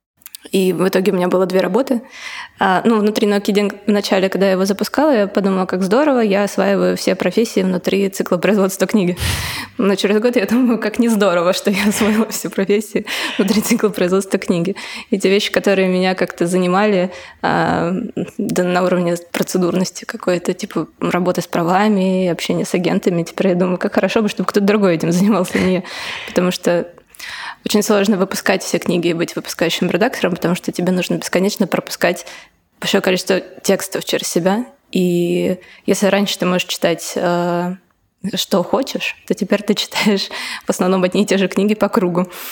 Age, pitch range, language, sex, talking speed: 20-39, 180-210 Hz, Russian, female, 170 wpm